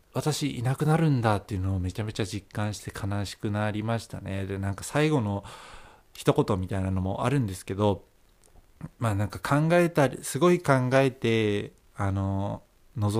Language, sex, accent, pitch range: Japanese, male, native, 100-140 Hz